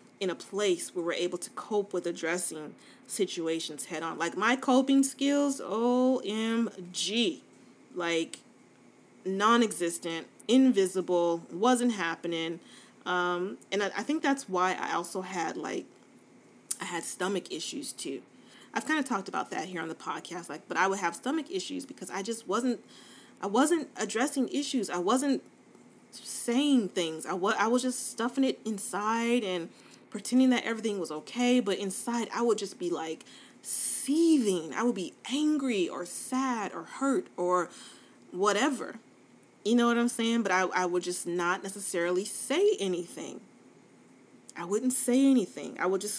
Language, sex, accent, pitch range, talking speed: English, female, American, 180-255 Hz, 155 wpm